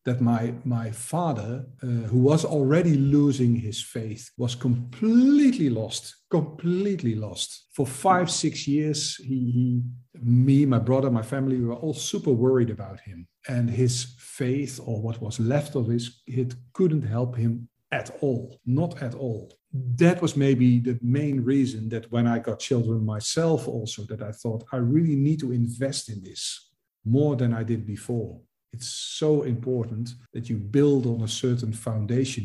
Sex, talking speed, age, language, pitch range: male, 165 wpm, 50-69, Finnish, 115-145 Hz